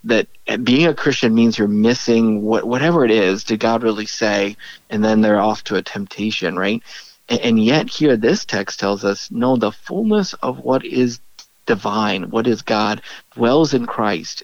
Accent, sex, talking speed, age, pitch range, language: American, male, 185 wpm, 50-69, 110-130 Hz, English